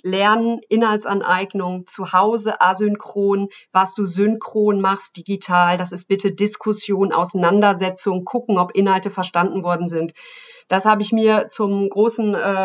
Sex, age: female, 40-59